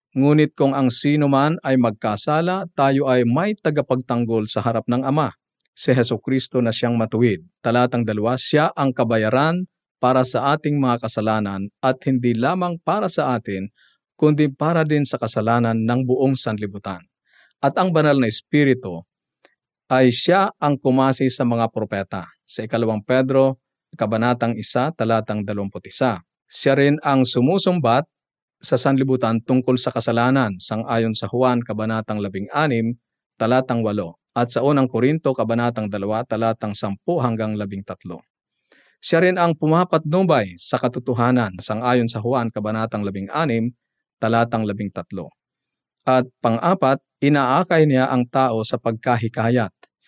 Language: Filipino